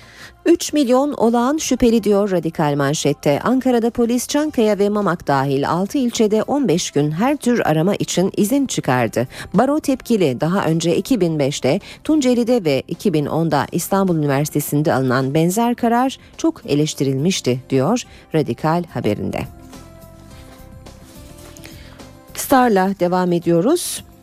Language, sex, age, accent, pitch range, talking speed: Turkish, female, 40-59, native, 150-230 Hz, 110 wpm